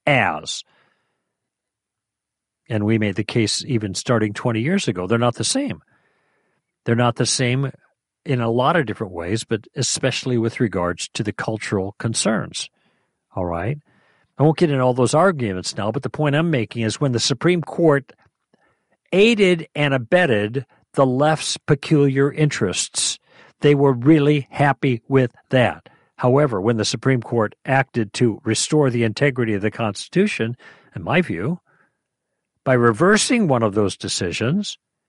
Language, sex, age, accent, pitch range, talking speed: English, male, 50-69, American, 110-150 Hz, 150 wpm